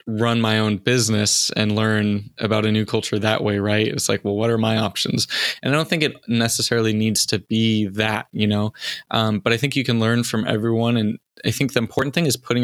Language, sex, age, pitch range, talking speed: English, male, 20-39, 110-120 Hz, 235 wpm